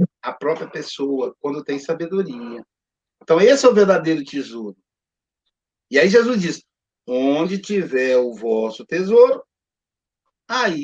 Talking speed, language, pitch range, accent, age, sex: 120 wpm, Portuguese, 160-245 Hz, Brazilian, 60-79, male